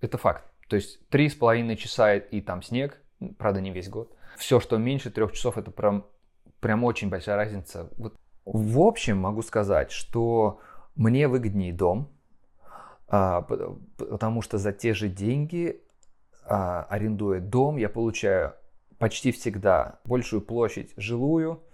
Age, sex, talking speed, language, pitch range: 20-39, male, 135 wpm, Russian, 100-120 Hz